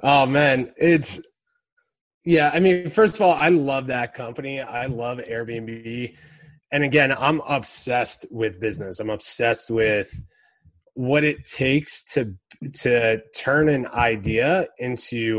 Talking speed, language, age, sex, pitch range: 135 wpm, English, 20-39, male, 115-150 Hz